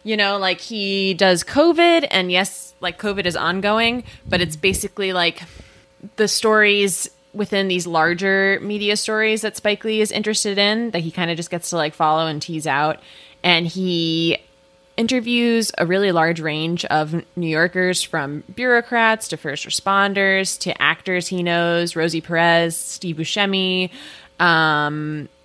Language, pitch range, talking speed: English, 165-210 Hz, 155 wpm